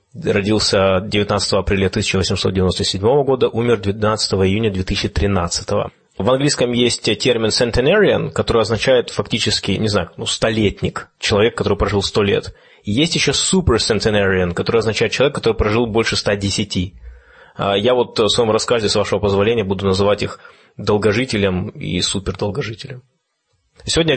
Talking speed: 130 wpm